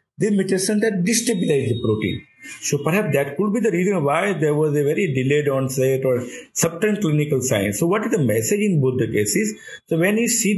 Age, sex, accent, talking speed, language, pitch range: 50-69, male, Indian, 210 wpm, English, 125-165 Hz